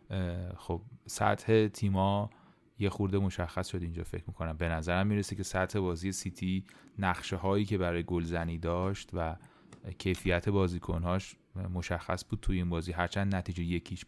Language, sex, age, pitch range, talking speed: Persian, male, 30-49, 90-105 Hz, 140 wpm